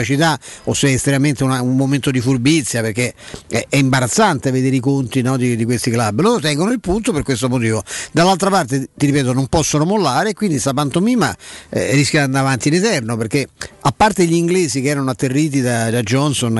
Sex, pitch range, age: male, 125-150 Hz, 50-69